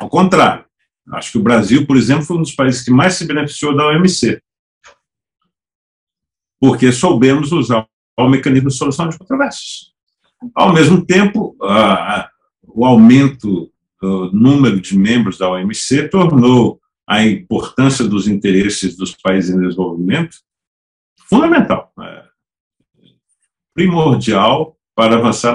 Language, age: Portuguese, 50-69